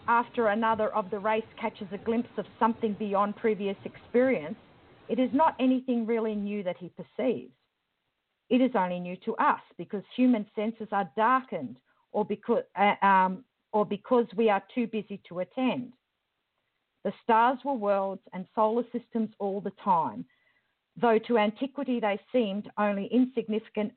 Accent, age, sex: Australian, 50-69, female